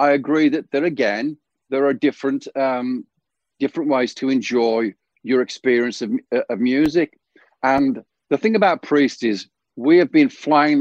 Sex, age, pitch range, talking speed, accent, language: male, 50-69, 120-150 Hz, 155 wpm, British, English